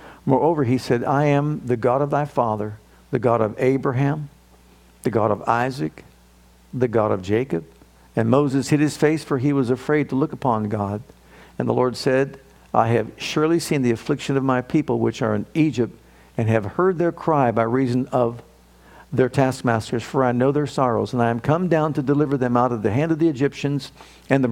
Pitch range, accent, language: 115-150 Hz, American, English